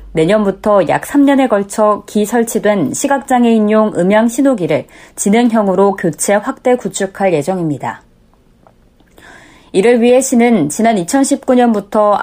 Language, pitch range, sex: Korean, 190-245 Hz, female